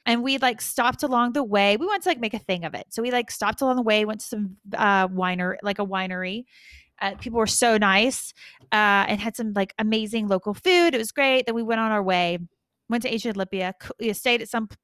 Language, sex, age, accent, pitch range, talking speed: English, female, 30-49, American, 205-265 Hz, 245 wpm